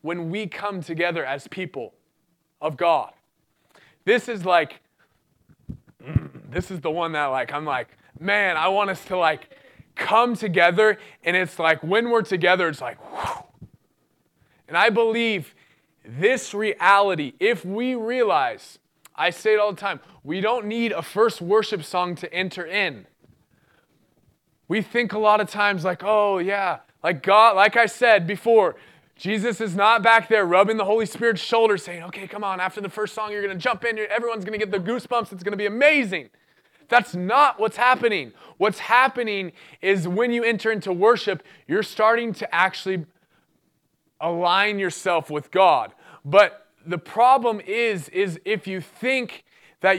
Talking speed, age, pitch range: 165 wpm, 20-39, 180-225 Hz